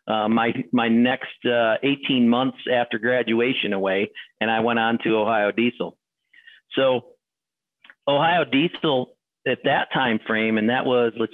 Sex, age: male, 50-69